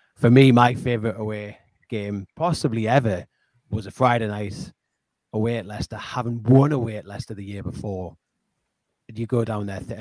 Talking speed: 170 wpm